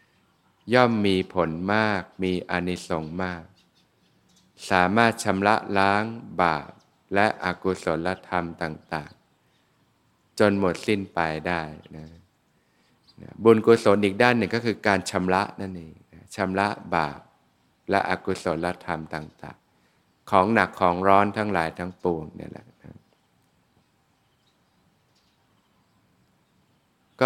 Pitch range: 85-105 Hz